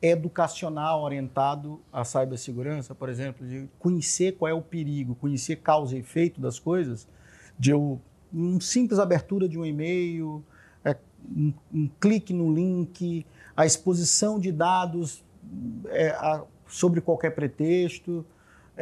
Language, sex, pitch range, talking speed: Portuguese, male, 140-185 Hz, 115 wpm